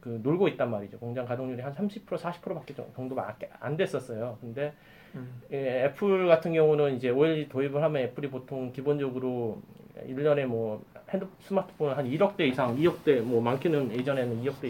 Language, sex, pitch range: Korean, male, 125-170 Hz